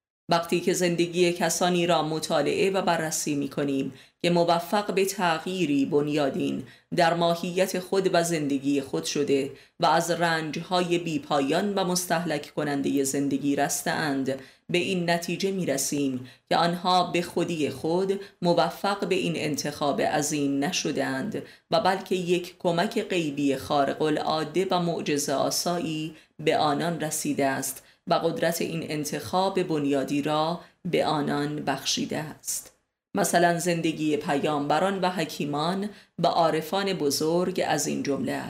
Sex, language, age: female, Persian, 30-49